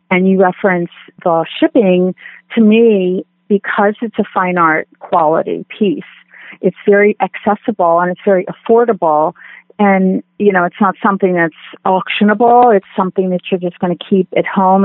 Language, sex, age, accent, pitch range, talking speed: English, female, 40-59, American, 175-200 Hz, 160 wpm